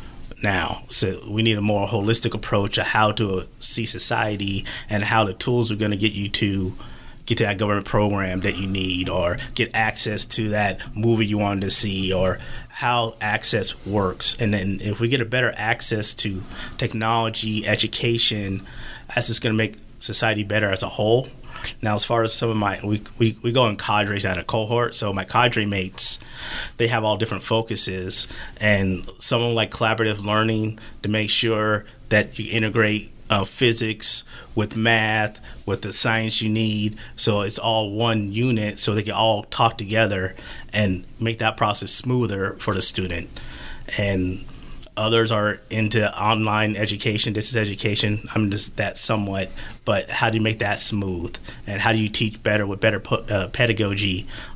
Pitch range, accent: 100-115 Hz, American